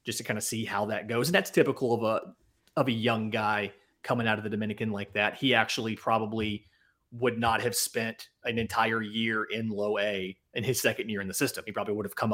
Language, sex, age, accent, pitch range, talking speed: English, male, 30-49, American, 110-135 Hz, 240 wpm